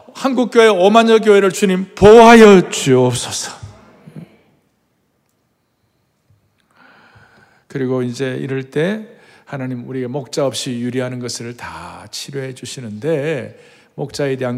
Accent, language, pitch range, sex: native, Korean, 135-200 Hz, male